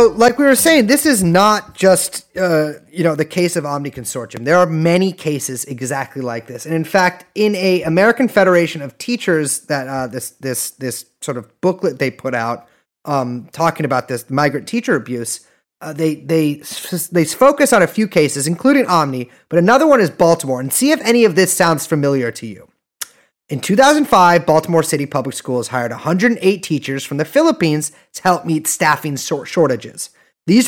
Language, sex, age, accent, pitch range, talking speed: English, male, 30-49, American, 135-190 Hz, 185 wpm